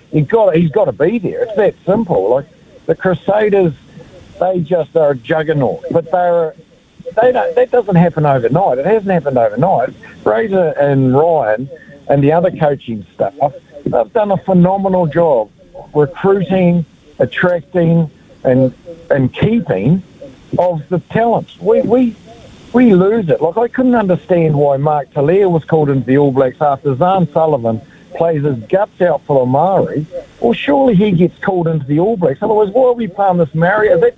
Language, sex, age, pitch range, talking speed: English, male, 60-79, 160-215 Hz, 170 wpm